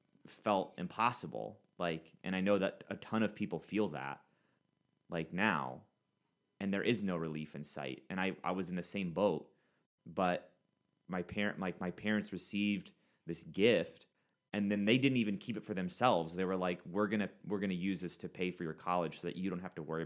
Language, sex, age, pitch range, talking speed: English, male, 30-49, 85-110 Hz, 205 wpm